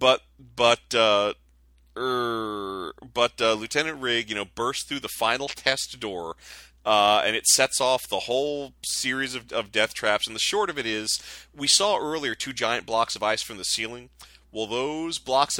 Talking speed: 185 wpm